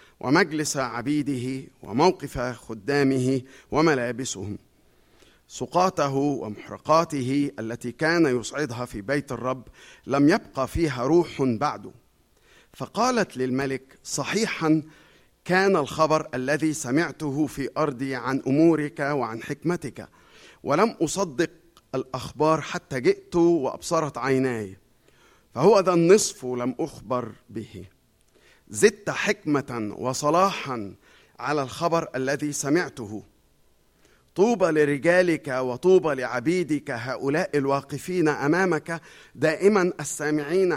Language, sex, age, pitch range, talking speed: Arabic, male, 50-69, 125-165 Hz, 90 wpm